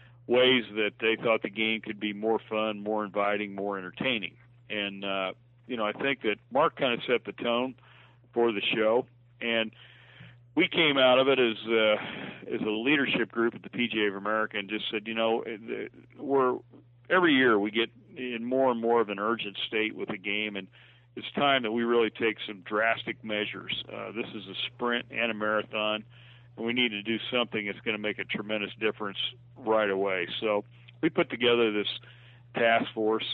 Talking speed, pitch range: 195 wpm, 105-120 Hz